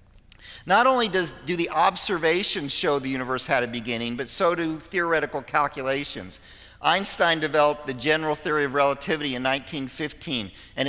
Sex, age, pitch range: male, 50-69, 135-175 Hz